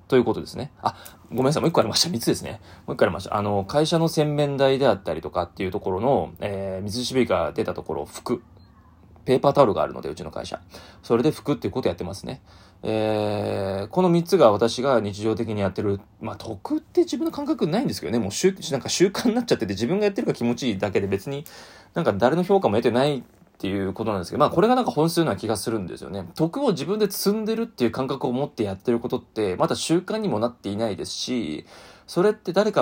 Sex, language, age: male, Japanese, 20-39